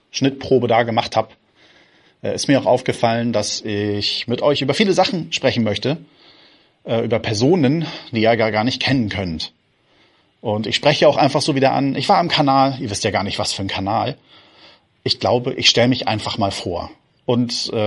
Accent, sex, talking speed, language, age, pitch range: German, male, 190 wpm, German, 30-49, 105-130 Hz